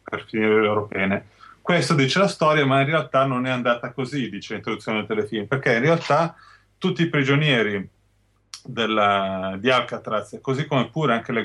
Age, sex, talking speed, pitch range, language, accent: 30-49, male, 180 wpm, 105-135 Hz, Italian, native